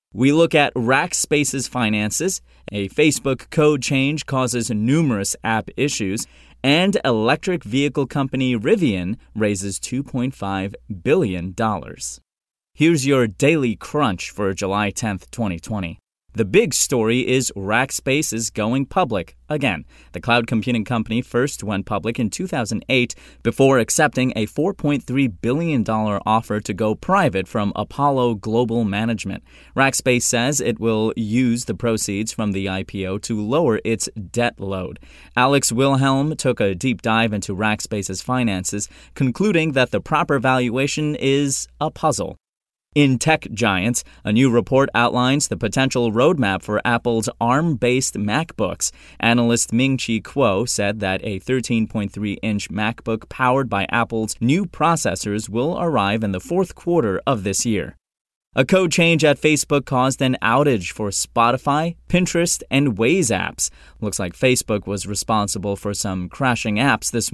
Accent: American